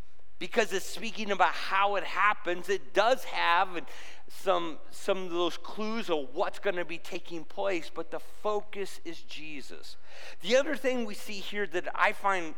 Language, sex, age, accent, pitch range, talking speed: English, male, 50-69, American, 165-210 Hz, 170 wpm